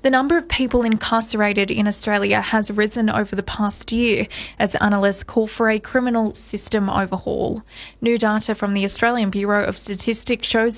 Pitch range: 205-235 Hz